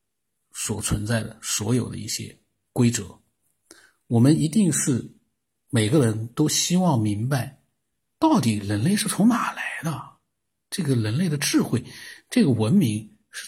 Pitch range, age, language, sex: 115-165 Hz, 50-69, Chinese, male